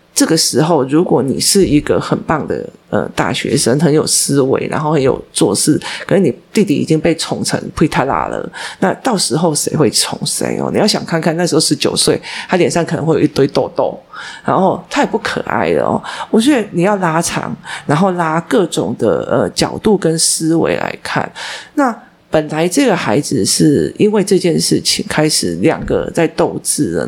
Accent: native